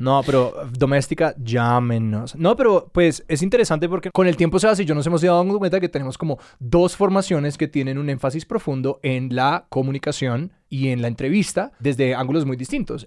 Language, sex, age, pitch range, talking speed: Spanish, male, 20-39, 125-150 Hz, 190 wpm